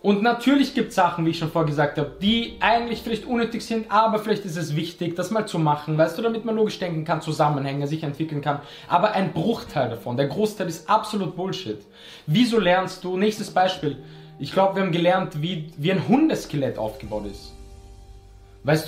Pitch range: 160-210 Hz